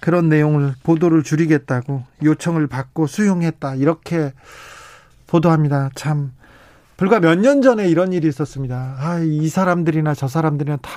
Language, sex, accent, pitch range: Korean, male, native, 150-200 Hz